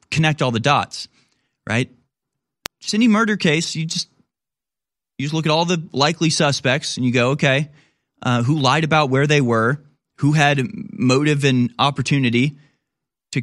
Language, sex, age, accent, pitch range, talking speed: English, male, 20-39, American, 120-145 Hz, 160 wpm